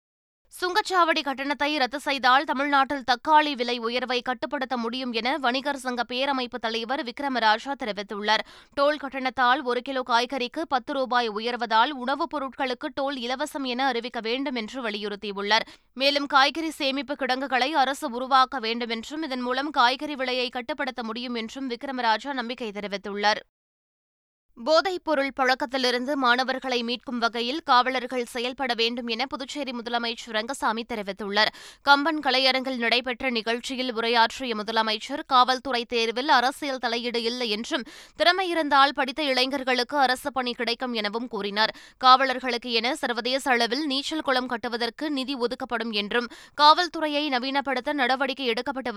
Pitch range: 235-275 Hz